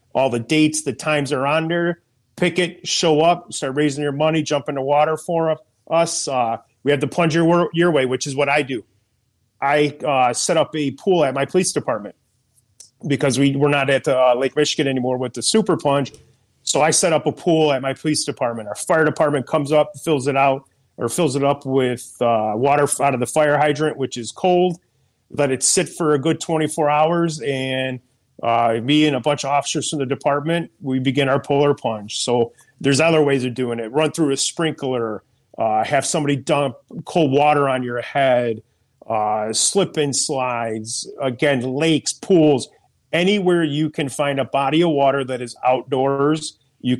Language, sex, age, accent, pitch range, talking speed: English, male, 30-49, American, 125-155 Hz, 195 wpm